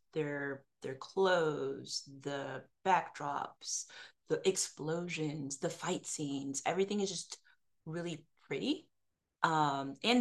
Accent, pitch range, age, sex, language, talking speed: American, 150-235 Hz, 30-49, female, English, 100 wpm